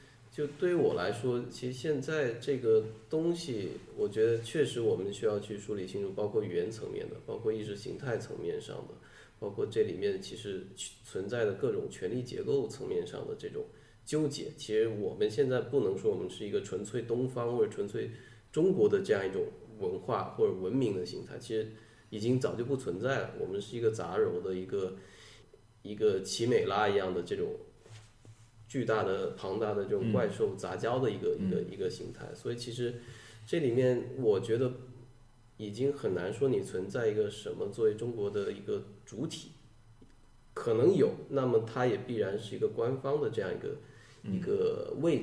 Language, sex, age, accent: Chinese, male, 20-39, native